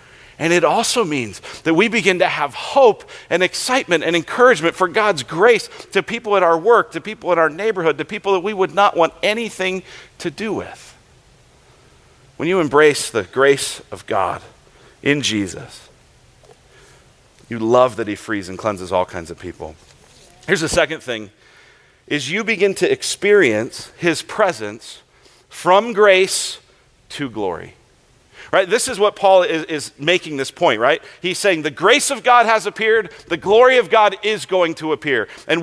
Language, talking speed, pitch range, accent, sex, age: English, 170 wpm, 155-220 Hz, American, male, 40-59